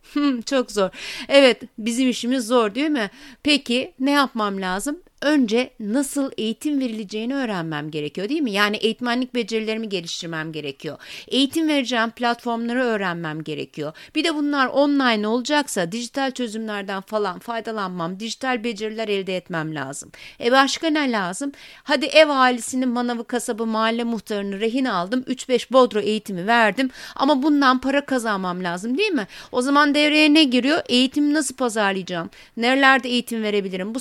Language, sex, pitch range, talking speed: Turkish, female, 210-270 Hz, 145 wpm